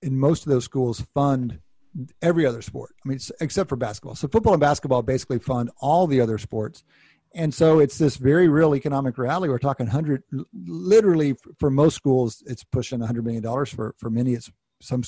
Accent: American